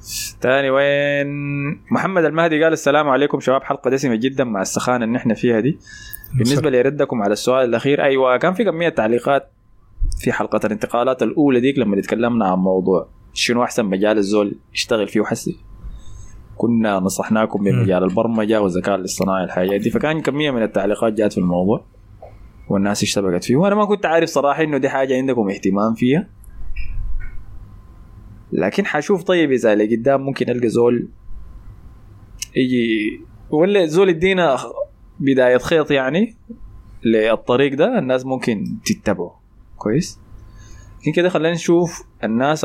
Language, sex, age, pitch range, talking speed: Arabic, male, 20-39, 105-145 Hz, 140 wpm